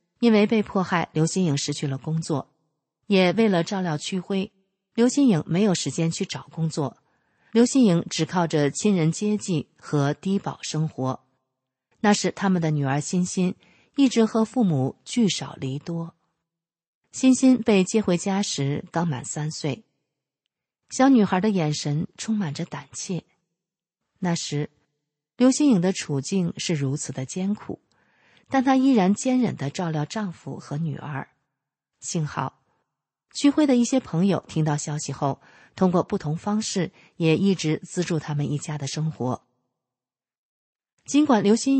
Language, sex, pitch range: Chinese, female, 145-200 Hz